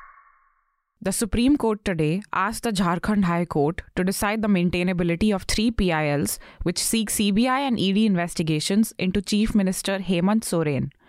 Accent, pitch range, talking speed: Indian, 170-210 Hz, 145 wpm